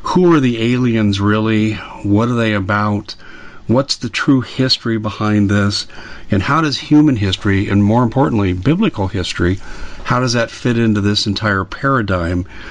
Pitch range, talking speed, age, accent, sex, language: 100-120 Hz, 155 wpm, 50-69, American, male, English